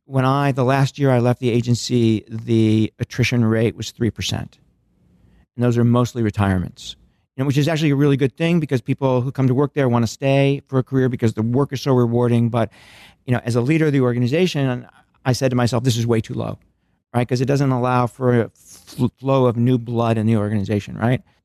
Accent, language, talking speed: American, English, 225 wpm